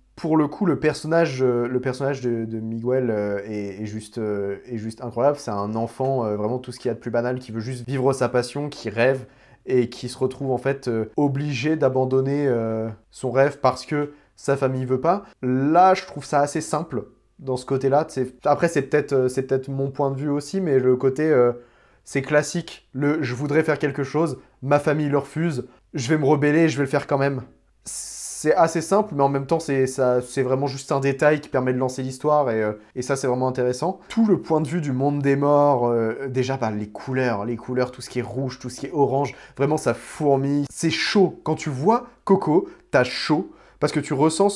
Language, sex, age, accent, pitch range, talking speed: French, male, 20-39, French, 125-150 Hz, 220 wpm